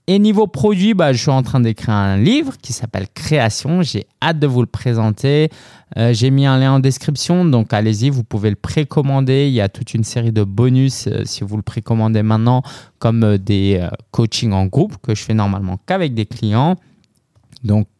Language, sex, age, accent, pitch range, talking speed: French, male, 20-39, French, 105-135 Hz, 215 wpm